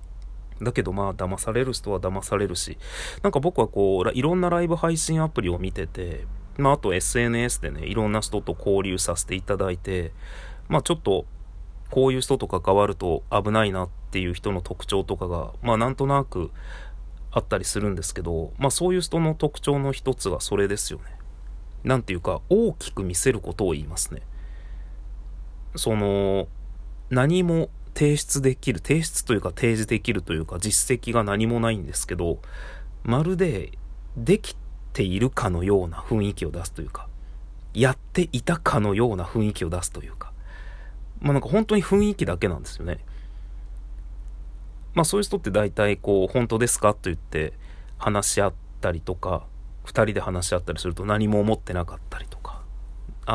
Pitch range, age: 90-125 Hz, 30-49